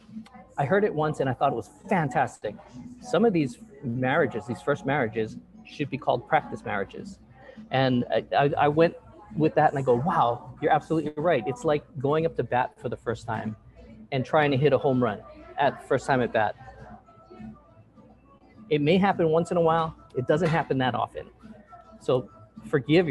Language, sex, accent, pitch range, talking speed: English, male, American, 120-155 Hz, 185 wpm